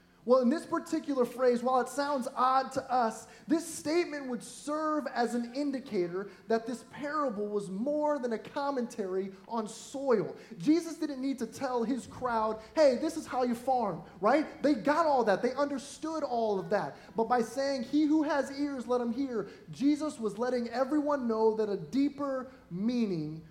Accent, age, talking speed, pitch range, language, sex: American, 20-39, 180 wpm, 180-245 Hz, English, male